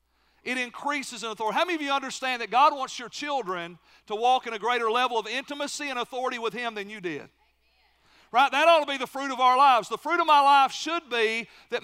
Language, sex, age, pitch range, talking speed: English, male, 40-59, 225-270 Hz, 240 wpm